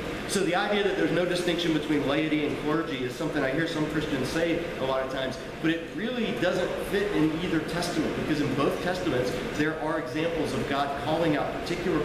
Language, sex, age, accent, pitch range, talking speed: English, male, 40-59, American, 140-170 Hz, 210 wpm